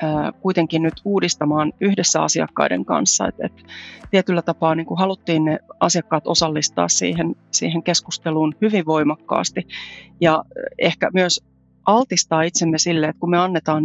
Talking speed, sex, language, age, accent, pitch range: 130 wpm, female, Finnish, 30-49, native, 155-175 Hz